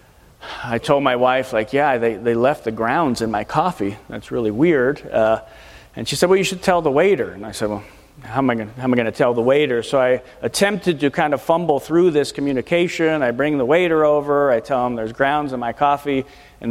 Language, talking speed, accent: English, 225 wpm, American